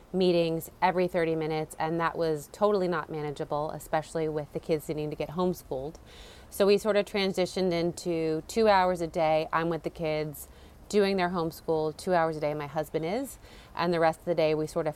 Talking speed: 205 wpm